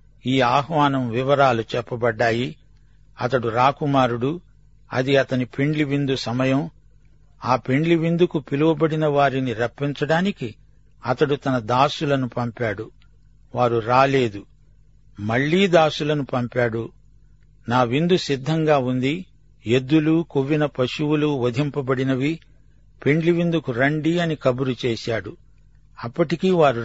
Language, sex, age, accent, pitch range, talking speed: Telugu, male, 50-69, native, 125-150 Hz, 95 wpm